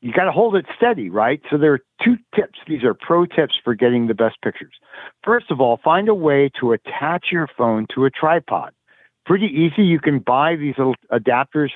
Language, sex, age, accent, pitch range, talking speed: English, male, 50-69, American, 120-160 Hz, 215 wpm